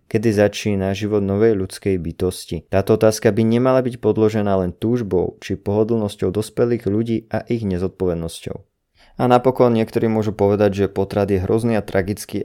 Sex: male